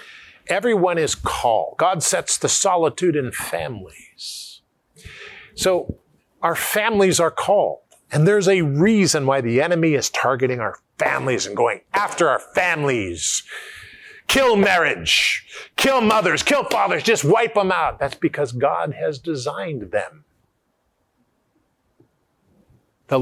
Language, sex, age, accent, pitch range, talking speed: English, male, 50-69, American, 120-205 Hz, 120 wpm